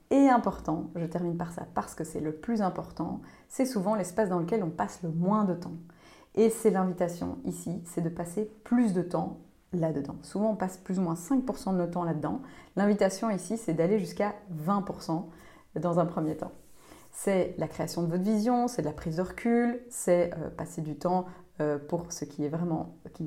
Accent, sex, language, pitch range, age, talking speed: French, female, French, 165-205 Hz, 30-49, 205 wpm